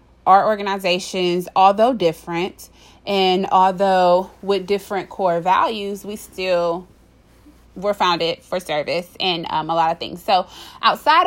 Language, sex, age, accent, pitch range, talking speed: English, female, 30-49, American, 180-230 Hz, 130 wpm